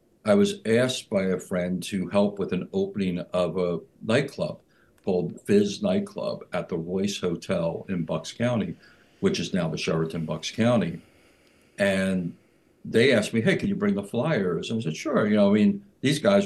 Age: 60-79